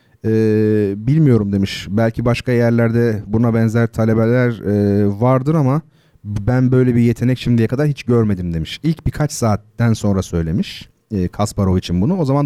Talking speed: 155 wpm